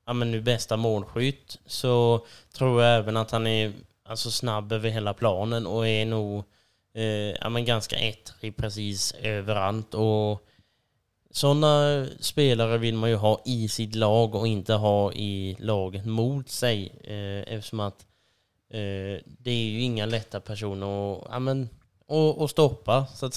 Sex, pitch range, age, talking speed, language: male, 110-130 Hz, 20-39, 160 wpm, Swedish